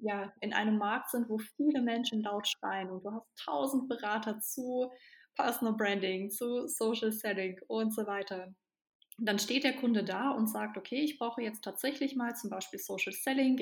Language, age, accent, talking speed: German, 20-39, German, 180 wpm